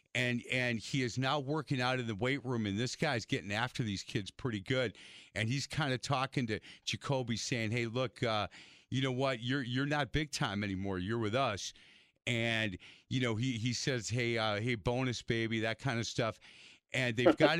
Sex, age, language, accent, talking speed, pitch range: male, 40-59, English, American, 210 wpm, 110-135 Hz